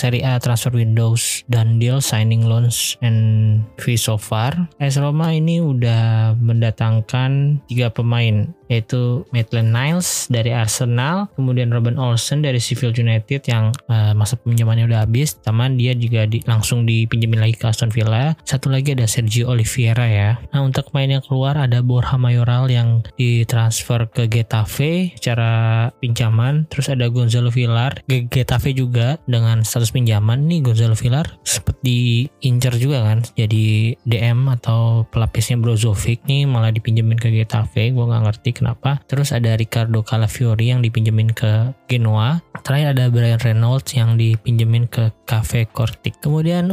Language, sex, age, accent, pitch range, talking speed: Indonesian, male, 20-39, native, 115-130 Hz, 150 wpm